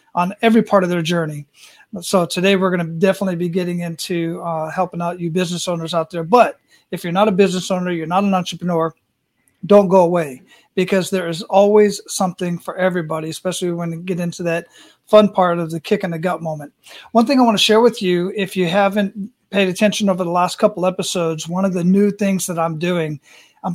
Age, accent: 40-59, American